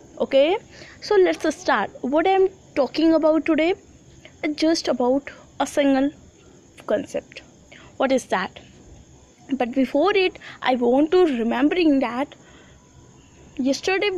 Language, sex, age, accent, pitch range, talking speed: English, female, 20-39, Indian, 245-320 Hz, 115 wpm